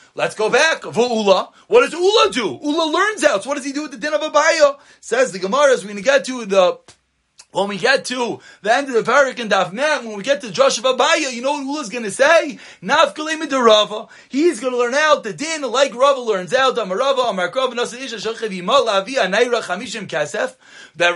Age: 30-49